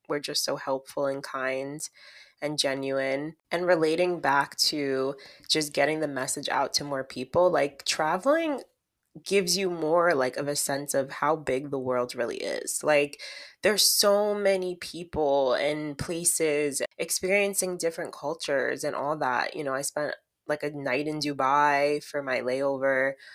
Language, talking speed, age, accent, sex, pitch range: English, 155 wpm, 20-39, American, female, 140-175 Hz